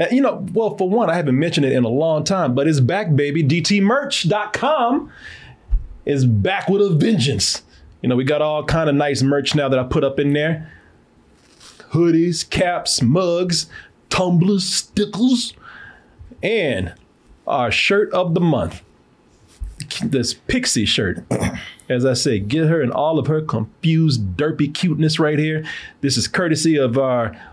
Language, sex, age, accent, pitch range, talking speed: English, male, 30-49, American, 115-160 Hz, 155 wpm